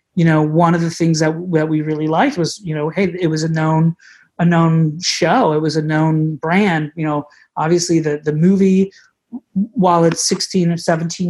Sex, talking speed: male, 200 wpm